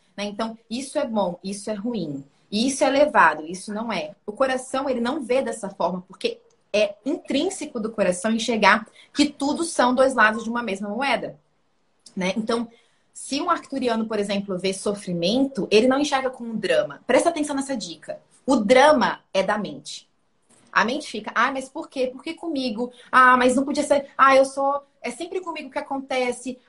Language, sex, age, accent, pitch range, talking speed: Portuguese, female, 20-39, Brazilian, 210-280 Hz, 185 wpm